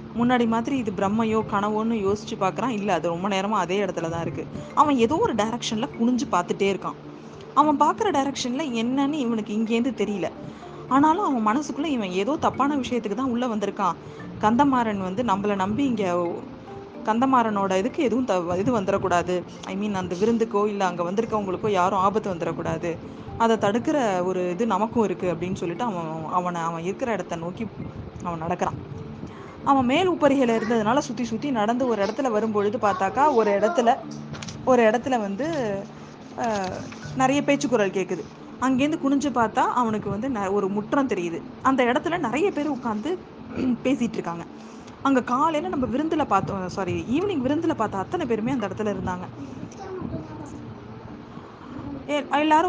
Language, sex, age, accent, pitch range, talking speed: Tamil, female, 20-39, native, 195-265 Hz, 145 wpm